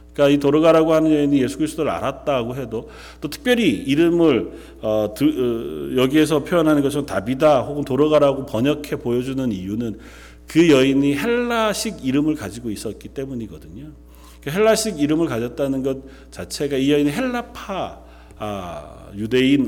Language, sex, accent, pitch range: Korean, male, native, 105-170 Hz